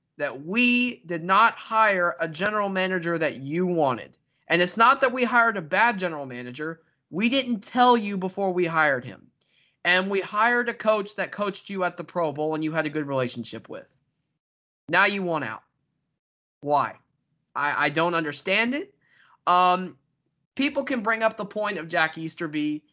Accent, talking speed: American, 180 wpm